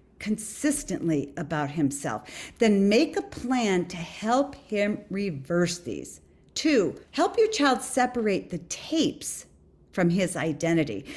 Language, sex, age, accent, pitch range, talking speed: English, female, 50-69, American, 165-250 Hz, 120 wpm